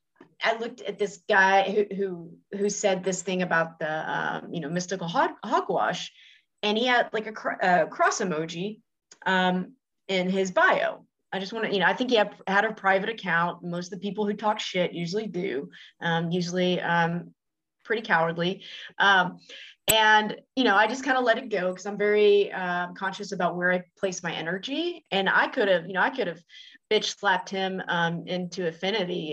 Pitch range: 180-215 Hz